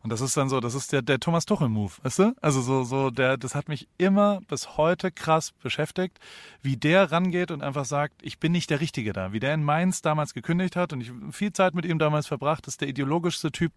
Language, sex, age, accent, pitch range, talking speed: German, male, 30-49, German, 130-165 Hz, 245 wpm